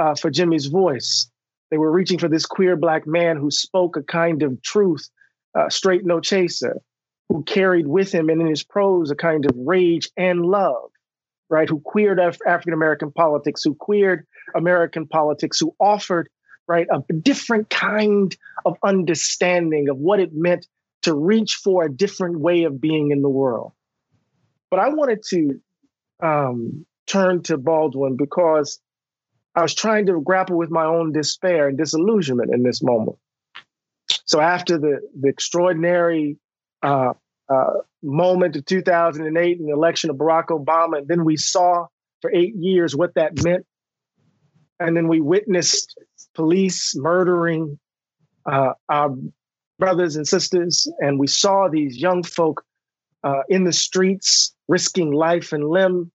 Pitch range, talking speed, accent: 150-180 Hz, 150 wpm, American